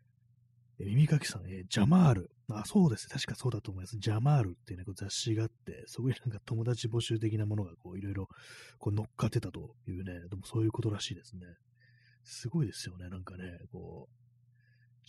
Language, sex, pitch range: Japanese, male, 105-125 Hz